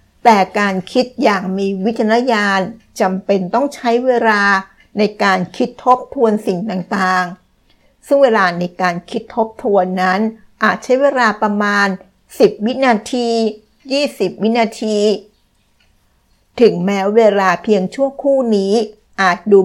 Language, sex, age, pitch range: Thai, female, 60-79, 190-230 Hz